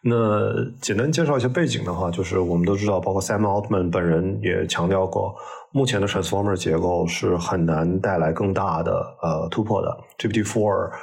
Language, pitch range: Chinese, 85-110 Hz